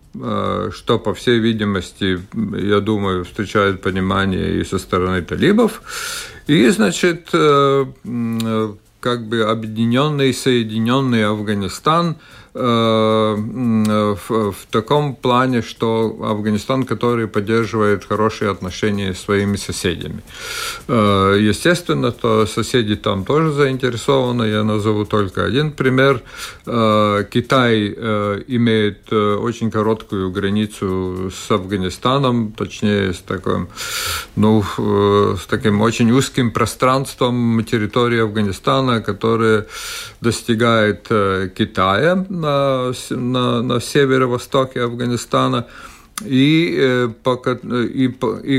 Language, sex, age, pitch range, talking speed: Russian, male, 50-69, 105-125 Hz, 85 wpm